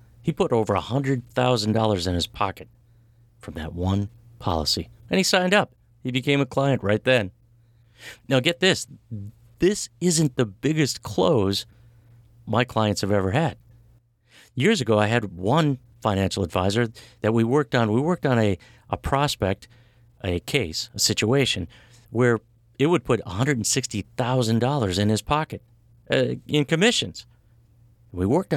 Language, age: English, 50-69